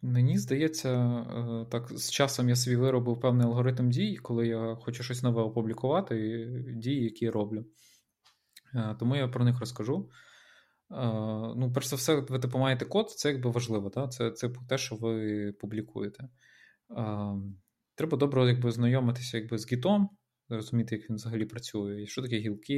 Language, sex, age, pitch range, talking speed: Ukrainian, male, 20-39, 110-125 Hz, 155 wpm